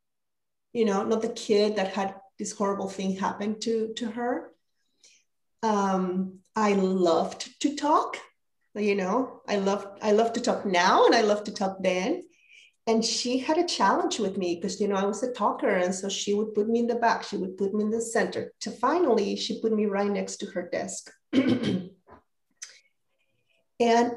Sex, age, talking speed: female, 30-49, 185 wpm